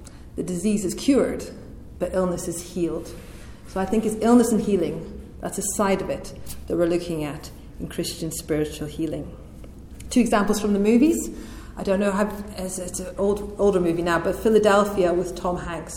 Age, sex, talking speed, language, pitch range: 40-59, female, 175 wpm, English, 180-210 Hz